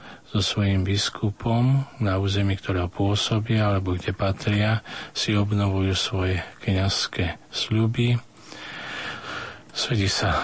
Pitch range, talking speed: 95-110 Hz, 100 wpm